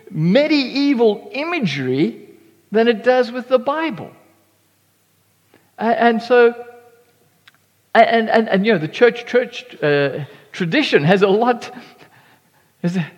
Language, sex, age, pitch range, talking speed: English, male, 60-79, 195-250 Hz, 115 wpm